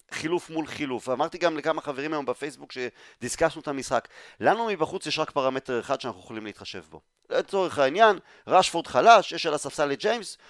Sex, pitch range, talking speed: male, 135-180 Hz, 175 wpm